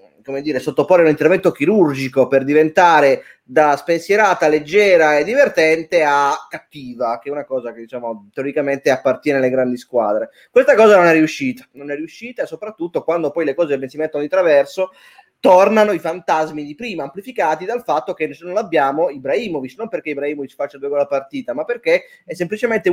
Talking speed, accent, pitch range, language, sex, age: 175 wpm, native, 140-195 Hz, Italian, male, 20-39